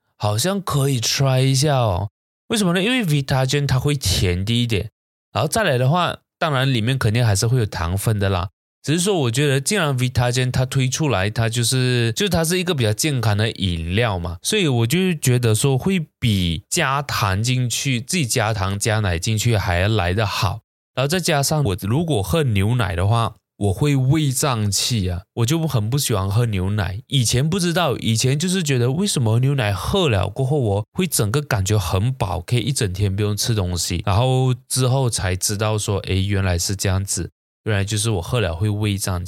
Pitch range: 100-135 Hz